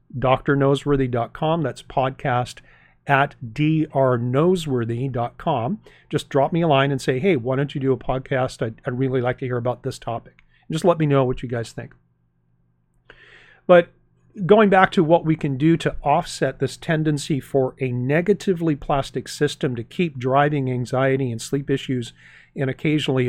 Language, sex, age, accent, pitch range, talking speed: English, male, 40-59, American, 130-155 Hz, 160 wpm